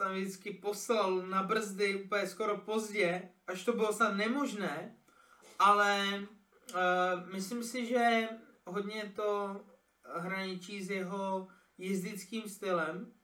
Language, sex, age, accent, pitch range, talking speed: Czech, male, 20-39, native, 180-210 Hz, 115 wpm